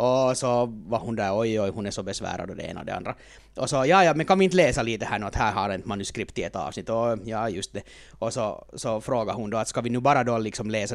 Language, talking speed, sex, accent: Finnish, 285 wpm, male, native